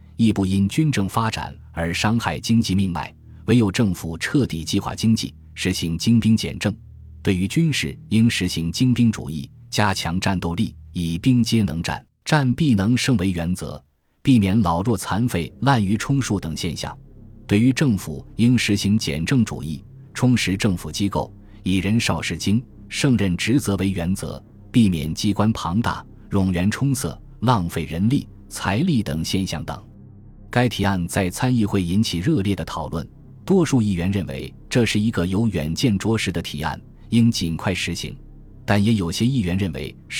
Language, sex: Chinese, male